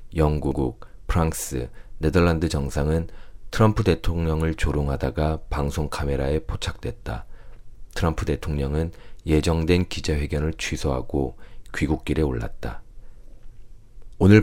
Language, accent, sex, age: Korean, native, male, 40-59